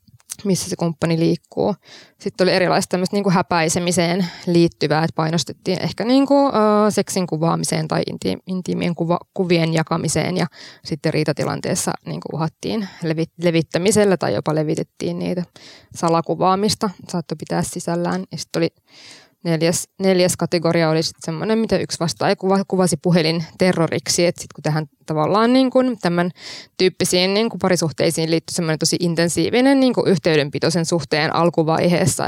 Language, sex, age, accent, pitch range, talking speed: Finnish, female, 20-39, native, 165-190 Hz, 125 wpm